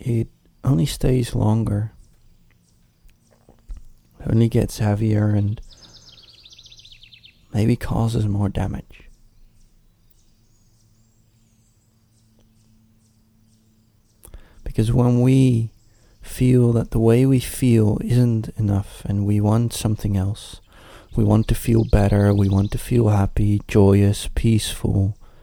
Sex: male